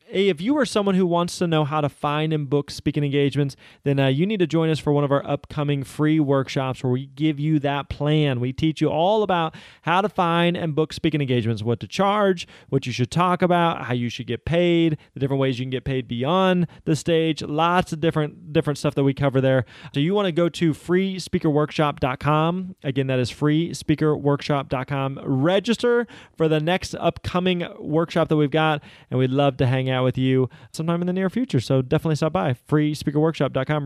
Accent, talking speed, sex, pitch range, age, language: American, 205 wpm, male, 135-170 Hz, 30-49, English